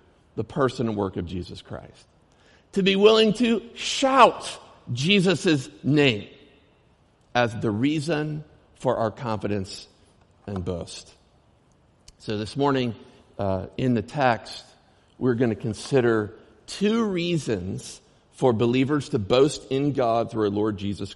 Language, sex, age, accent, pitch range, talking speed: English, male, 50-69, American, 105-140 Hz, 130 wpm